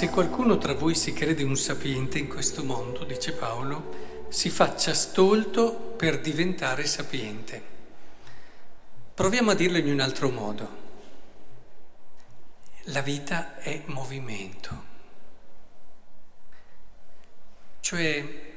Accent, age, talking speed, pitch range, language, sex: native, 50-69, 100 wpm, 155-195 Hz, Italian, male